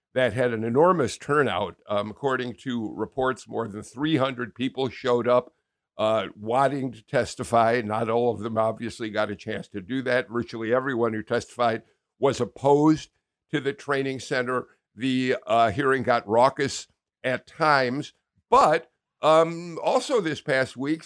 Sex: male